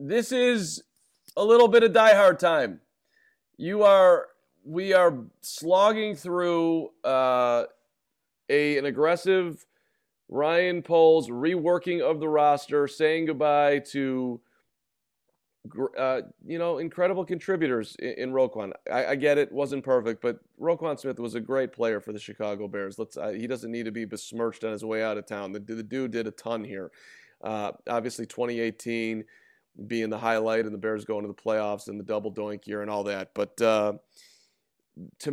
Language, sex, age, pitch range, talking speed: English, male, 40-59, 115-160 Hz, 165 wpm